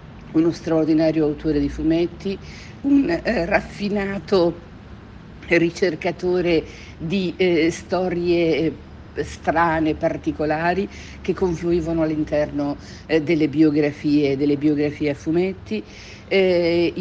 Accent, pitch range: native, 145-180 Hz